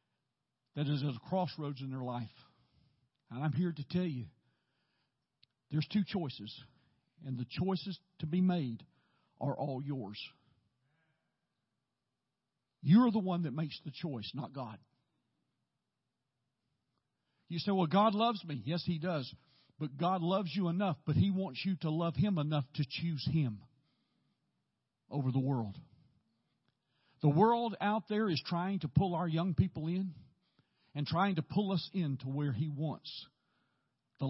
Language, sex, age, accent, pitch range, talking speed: English, male, 50-69, American, 130-175 Hz, 150 wpm